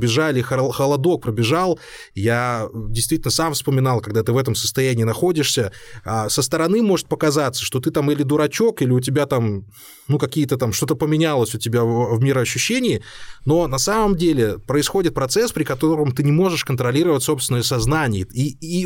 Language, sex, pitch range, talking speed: Russian, male, 125-165 Hz, 160 wpm